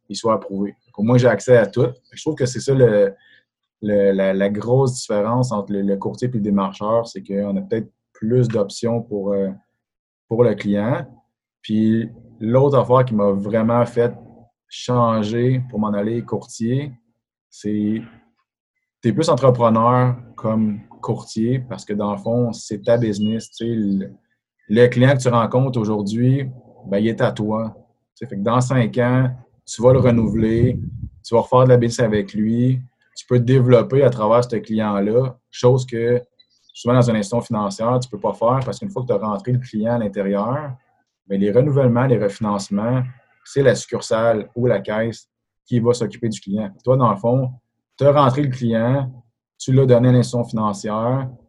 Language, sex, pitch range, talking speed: French, male, 105-125 Hz, 185 wpm